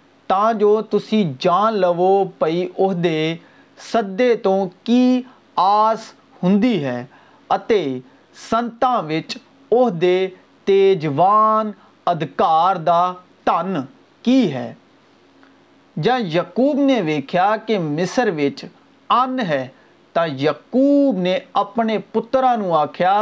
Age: 40-59